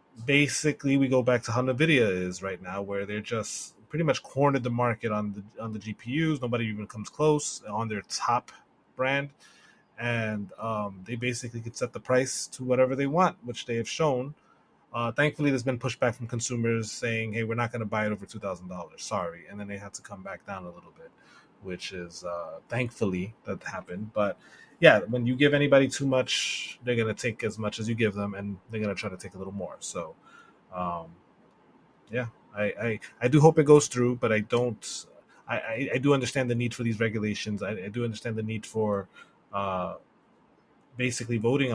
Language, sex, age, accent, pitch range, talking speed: English, male, 20-39, American, 105-130 Hz, 210 wpm